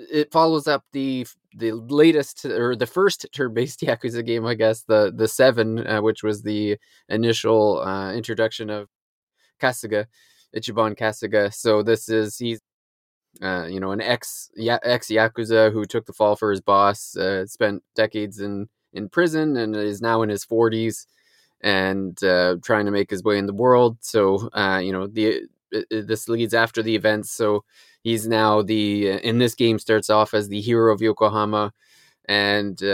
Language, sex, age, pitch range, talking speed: English, male, 20-39, 105-115 Hz, 175 wpm